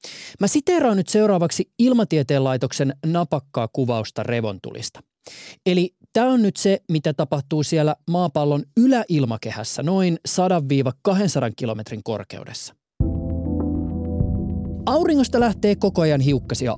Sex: male